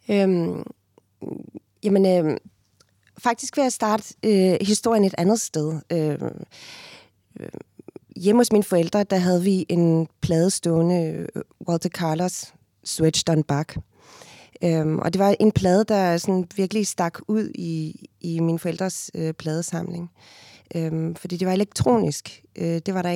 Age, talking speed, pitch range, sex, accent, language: 30-49, 115 wpm, 160-195 Hz, female, native, Danish